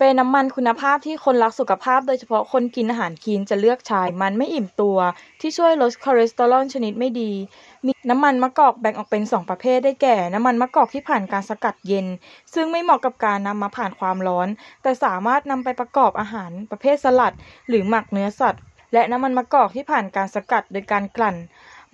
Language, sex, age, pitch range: Thai, female, 20-39, 210-260 Hz